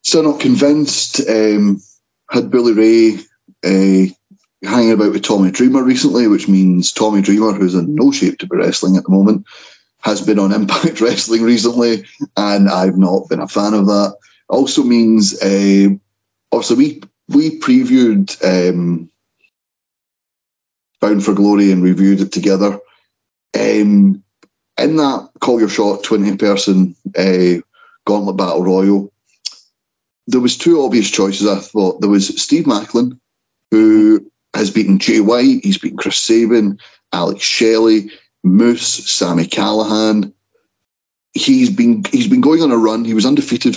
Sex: male